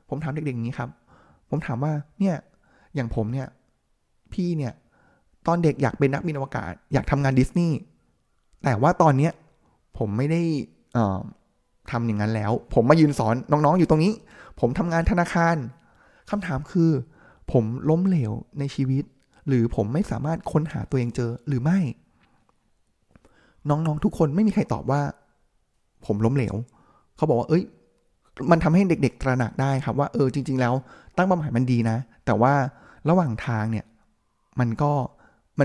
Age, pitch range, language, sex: 20-39, 120-155 Hz, Thai, male